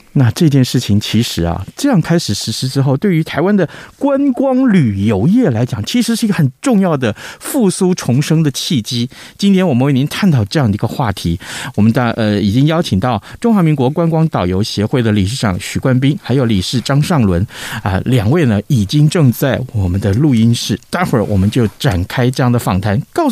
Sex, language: male, Chinese